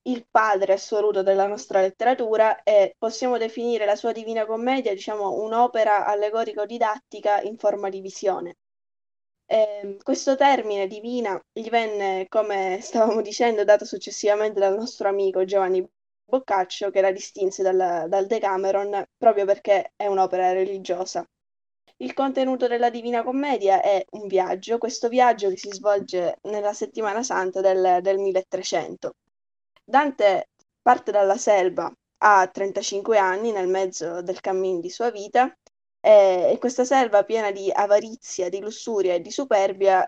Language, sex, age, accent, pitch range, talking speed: Italian, female, 10-29, native, 190-225 Hz, 135 wpm